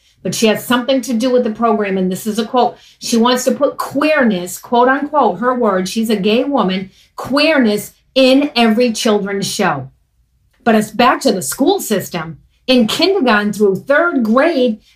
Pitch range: 205-285 Hz